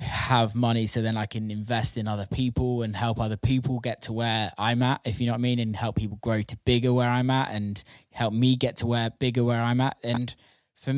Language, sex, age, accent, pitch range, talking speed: English, male, 20-39, British, 105-125 Hz, 250 wpm